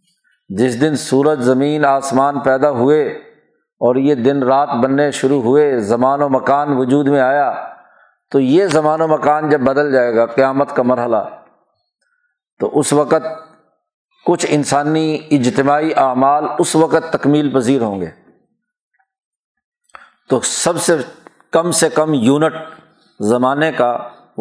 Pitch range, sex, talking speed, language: 135-170 Hz, male, 135 wpm, Urdu